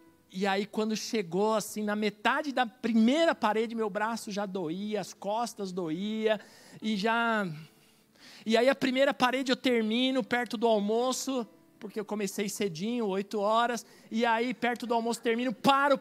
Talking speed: 155 wpm